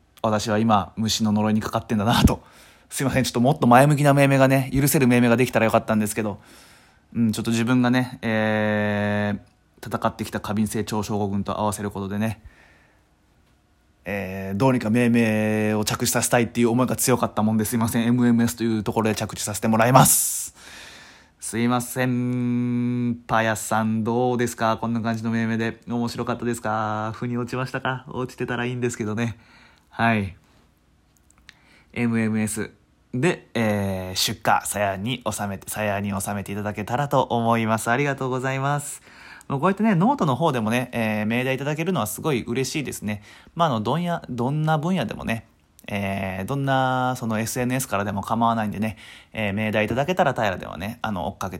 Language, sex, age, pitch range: Japanese, male, 20-39, 105-125 Hz